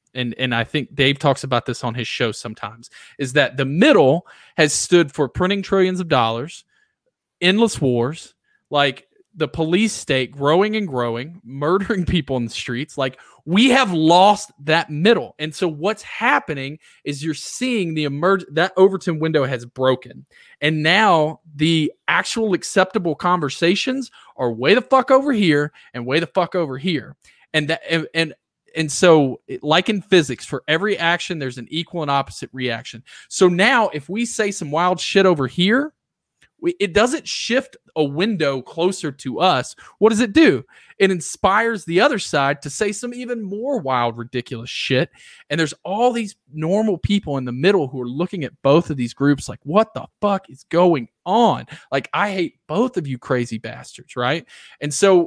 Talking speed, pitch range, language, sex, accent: 180 wpm, 140-200 Hz, English, male, American